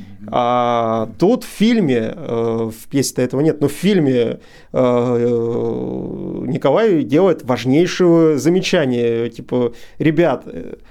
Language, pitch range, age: Russian, 120-155 Hz, 30-49